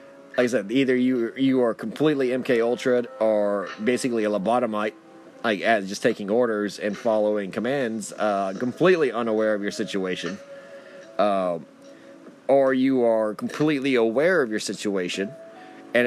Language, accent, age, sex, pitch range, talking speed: English, American, 30-49, male, 105-135 Hz, 140 wpm